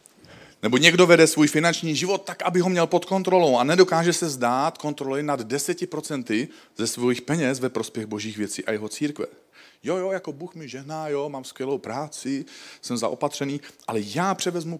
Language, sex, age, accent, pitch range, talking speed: Czech, male, 40-59, native, 105-155 Hz, 185 wpm